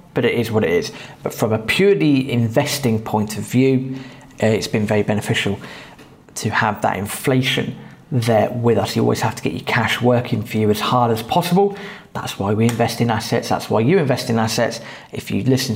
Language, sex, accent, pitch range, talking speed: English, male, British, 110-135 Hz, 205 wpm